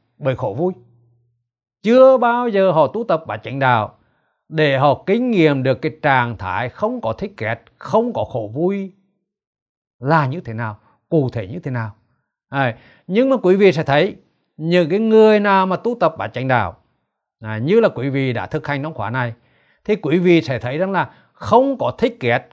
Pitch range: 120-185 Hz